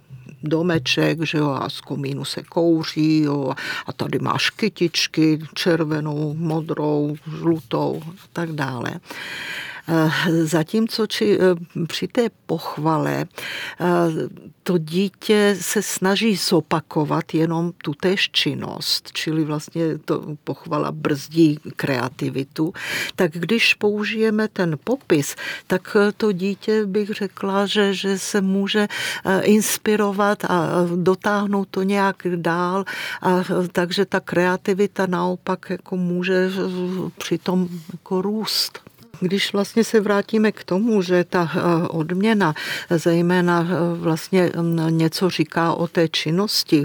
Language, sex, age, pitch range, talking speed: Czech, female, 50-69, 160-190 Hz, 110 wpm